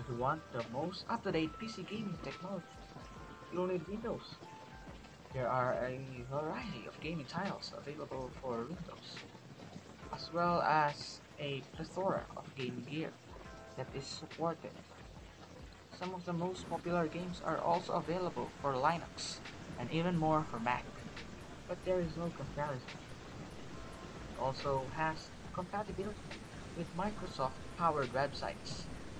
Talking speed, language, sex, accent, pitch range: 125 wpm, English, male, Filipino, 130-180 Hz